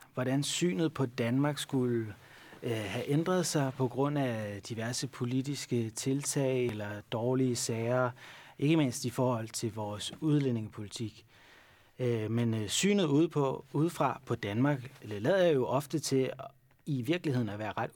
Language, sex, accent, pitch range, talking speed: Danish, male, native, 115-145 Hz, 150 wpm